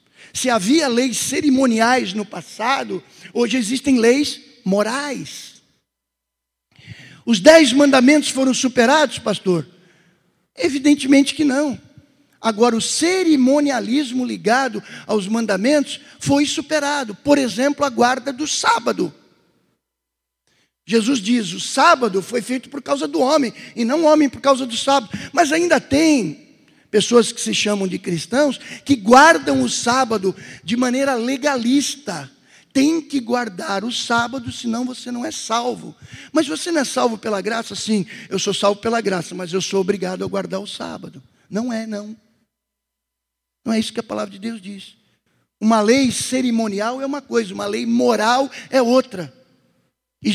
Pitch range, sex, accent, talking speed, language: 205-275 Hz, male, Brazilian, 145 wpm, Portuguese